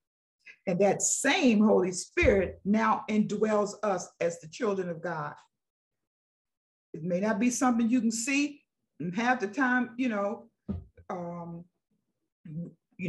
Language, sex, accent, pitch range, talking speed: English, female, American, 180-230 Hz, 135 wpm